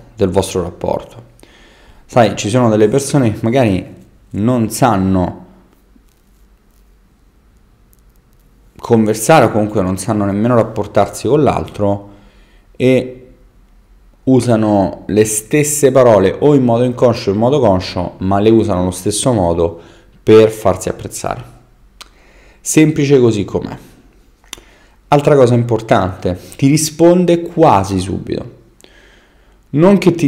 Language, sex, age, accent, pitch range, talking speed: Italian, male, 30-49, native, 100-135 Hz, 110 wpm